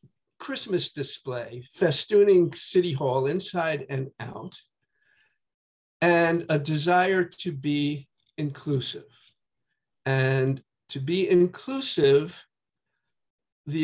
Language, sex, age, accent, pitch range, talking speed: English, male, 50-69, American, 145-185 Hz, 80 wpm